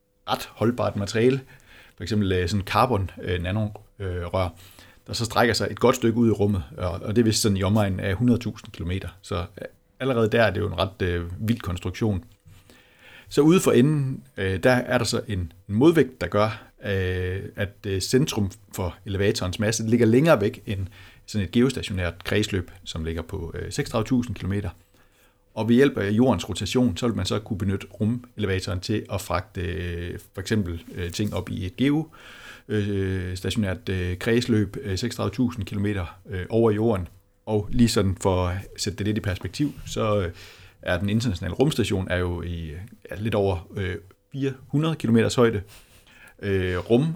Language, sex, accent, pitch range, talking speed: Danish, male, native, 95-115 Hz, 155 wpm